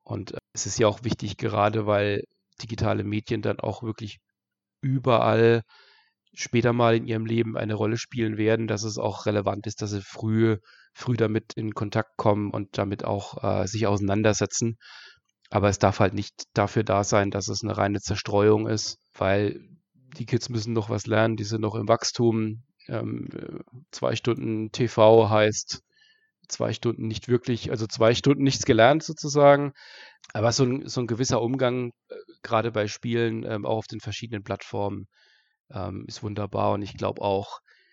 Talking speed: 165 wpm